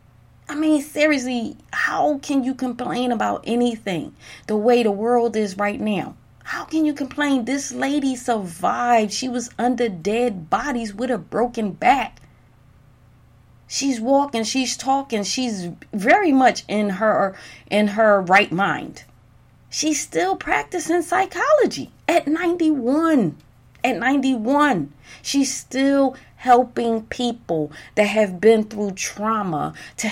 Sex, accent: female, American